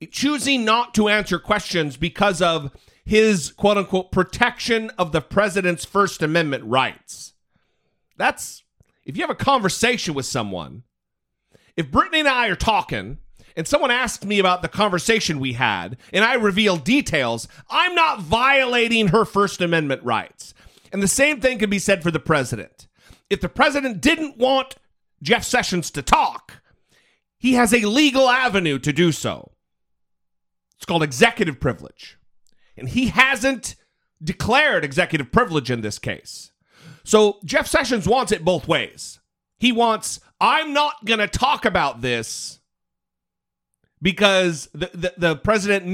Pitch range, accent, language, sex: 160-240 Hz, American, English, male